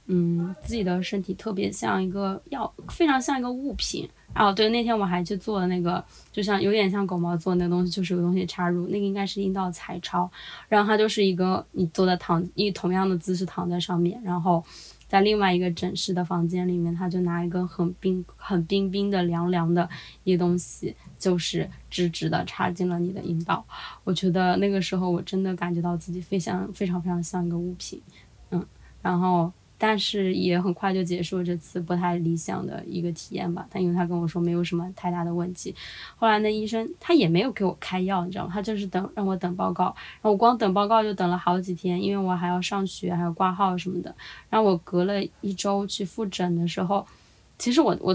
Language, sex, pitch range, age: Chinese, female, 175-200 Hz, 20-39